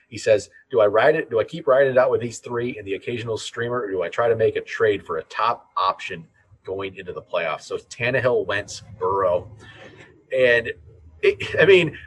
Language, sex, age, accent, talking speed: English, male, 30-49, American, 215 wpm